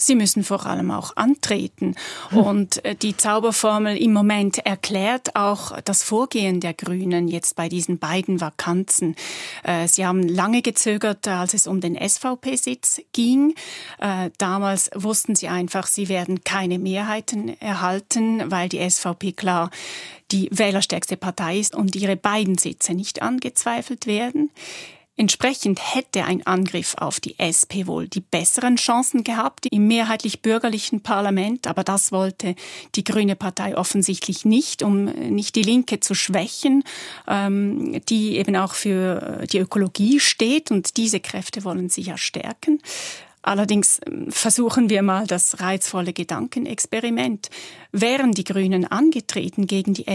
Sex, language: female, German